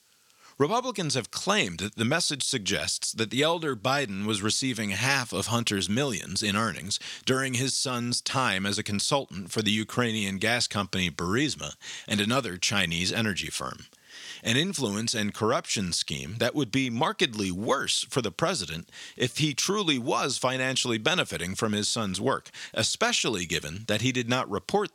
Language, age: English, 40-59